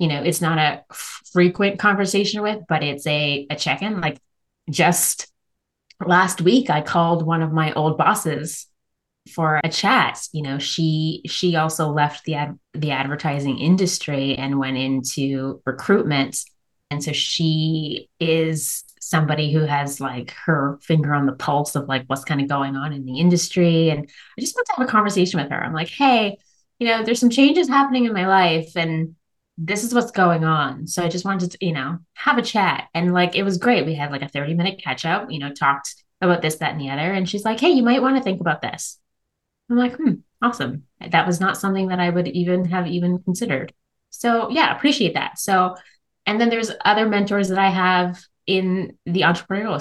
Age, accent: 20-39, American